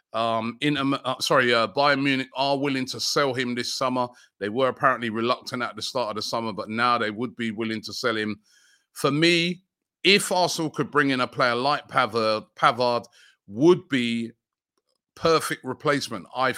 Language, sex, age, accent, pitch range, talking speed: English, male, 30-49, British, 110-130 Hz, 185 wpm